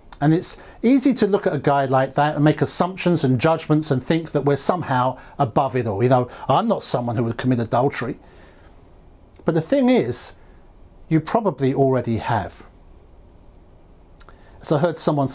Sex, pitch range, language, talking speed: male, 105-155 Hz, English, 170 wpm